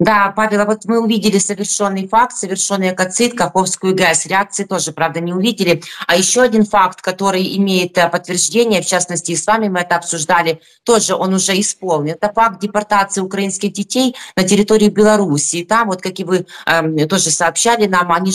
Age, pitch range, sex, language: 20-39, 175-215 Hz, female, Ukrainian